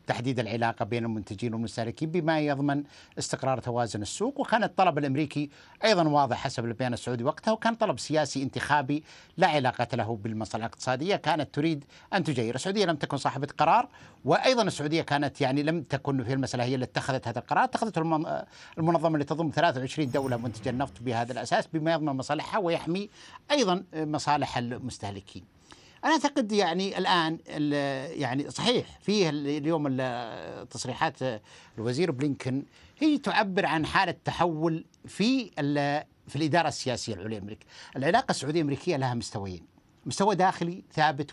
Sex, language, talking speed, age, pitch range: male, Arabic, 140 wpm, 60-79, 125-165 Hz